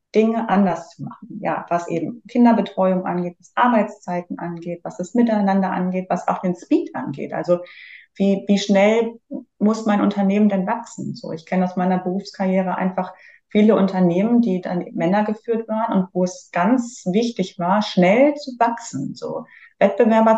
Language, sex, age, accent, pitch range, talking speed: German, female, 30-49, German, 175-210 Hz, 160 wpm